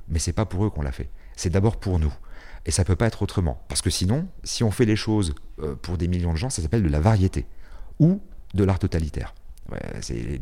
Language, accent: French, French